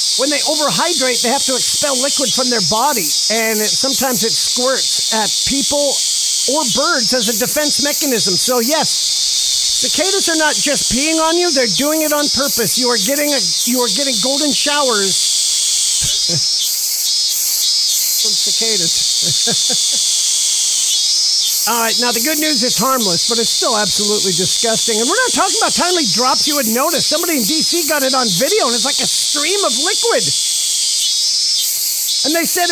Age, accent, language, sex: 40-59, American, English, male